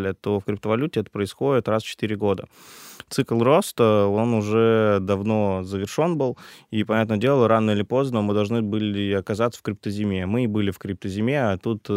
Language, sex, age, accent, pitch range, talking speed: Russian, male, 20-39, native, 100-115 Hz, 175 wpm